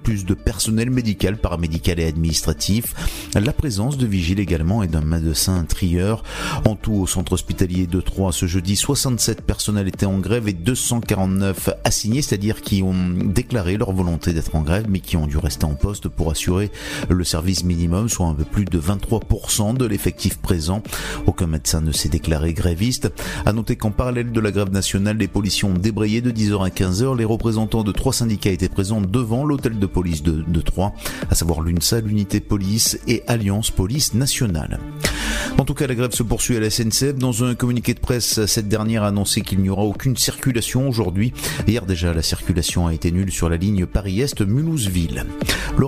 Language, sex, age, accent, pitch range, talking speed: French, male, 30-49, French, 90-115 Hz, 190 wpm